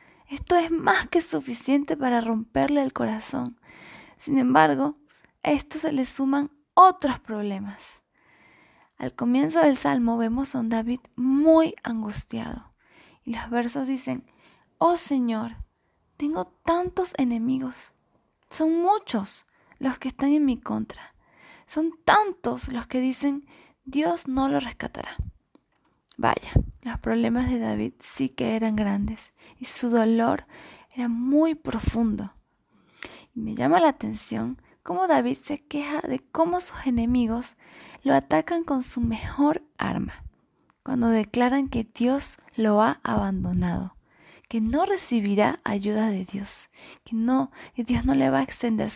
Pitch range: 225-295 Hz